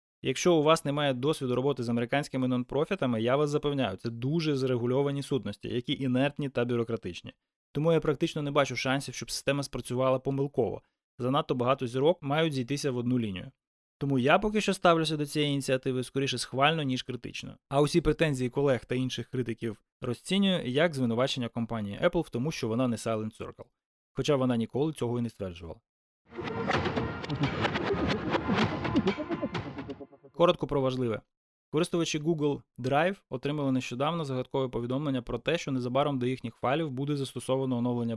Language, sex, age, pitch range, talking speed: Ukrainian, male, 20-39, 125-150 Hz, 150 wpm